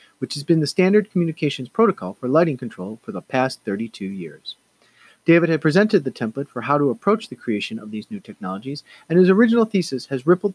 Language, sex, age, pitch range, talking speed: English, male, 40-59, 125-185 Hz, 205 wpm